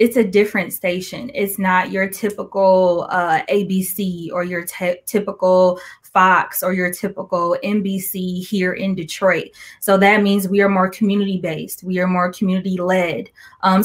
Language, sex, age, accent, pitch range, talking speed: English, female, 20-39, American, 185-205 Hz, 145 wpm